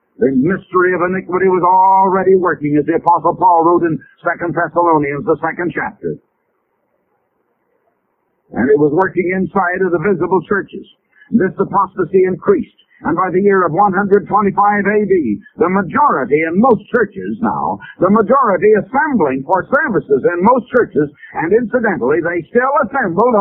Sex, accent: male, American